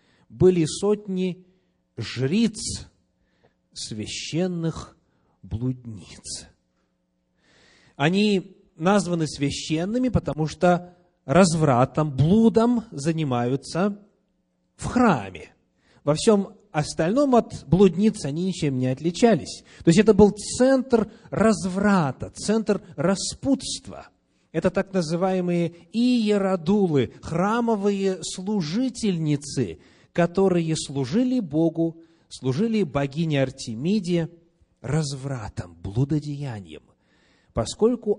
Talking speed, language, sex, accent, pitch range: 75 wpm, Russian, male, native, 135-200 Hz